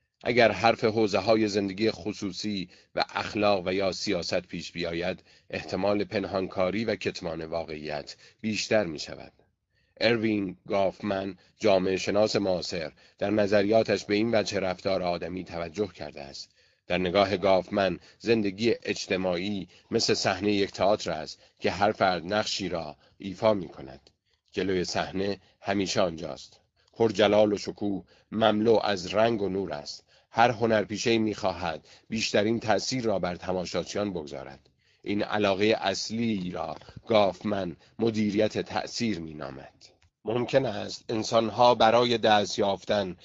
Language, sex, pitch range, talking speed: Persian, male, 95-110 Hz, 130 wpm